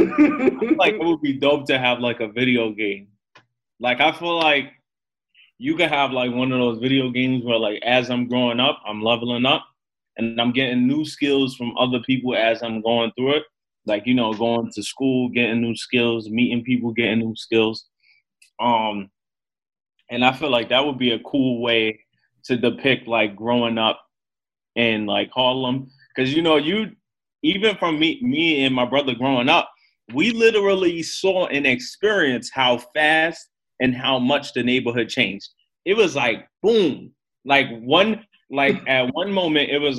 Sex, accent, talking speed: male, American, 180 wpm